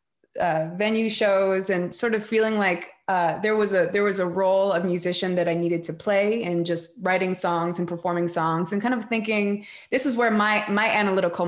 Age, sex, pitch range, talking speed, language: 20-39, female, 170-195 Hz, 210 wpm, English